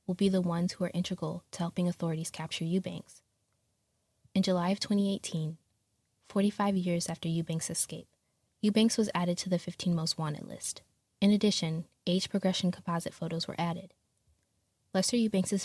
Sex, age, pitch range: female, 10-29, 165-190 Hz